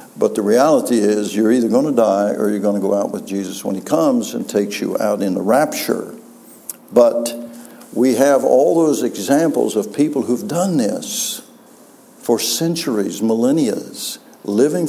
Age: 60-79